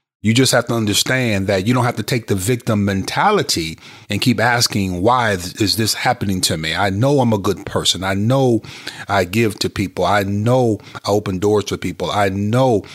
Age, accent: 30-49, American